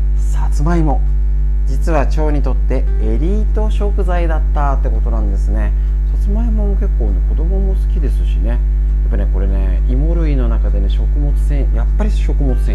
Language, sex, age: Japanese, male, 40-59